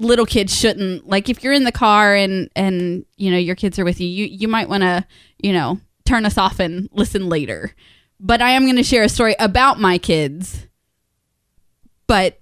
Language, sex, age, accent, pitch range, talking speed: English, female, 20-39, American, 185-235 Hz, 200 wpm